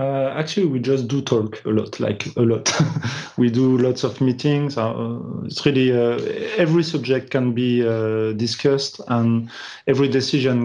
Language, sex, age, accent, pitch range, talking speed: English, male, 30-49, French, 115-145 Hz, 165 wpm